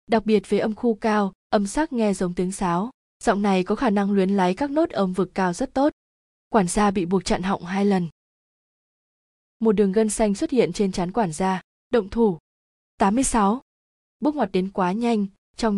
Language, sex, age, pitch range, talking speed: Vietnamese, female, 20-39, 185-230 Hz, 200 wpm